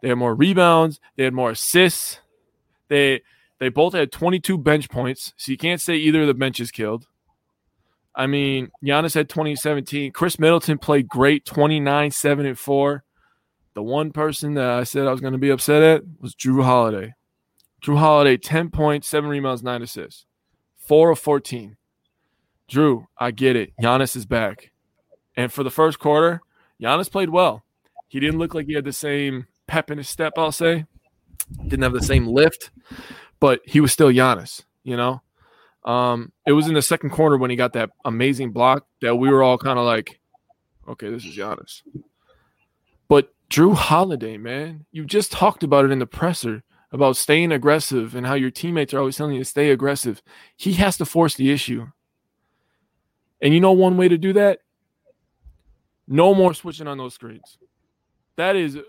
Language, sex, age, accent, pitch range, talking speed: English, male, 20-39, American, 130-160 Hz, 180 wpm